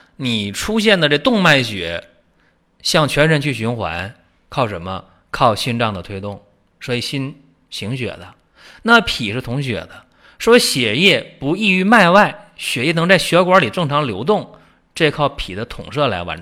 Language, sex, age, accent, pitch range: Chinese, male, 30-49, native, 95-150 Hz